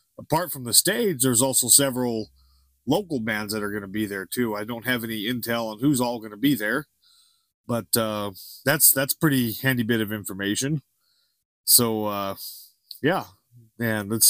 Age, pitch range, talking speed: 30-49, 115-155 Hz, 175 wpm